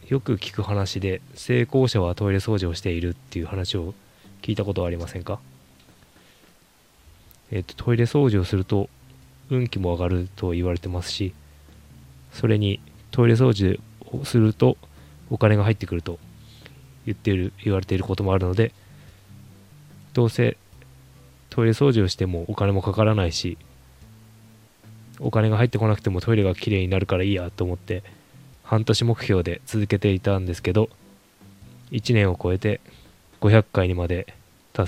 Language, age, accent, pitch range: Japanese, 20-39, native, 90-110 Hz